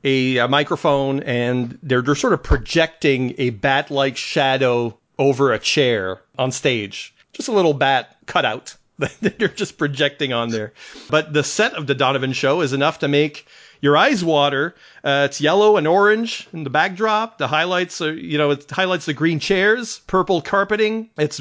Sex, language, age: male, English, 40-59